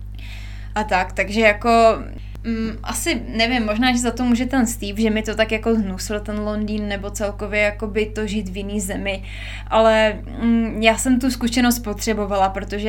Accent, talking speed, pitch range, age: native, 180 wpm, 195-230 Hz, 20-39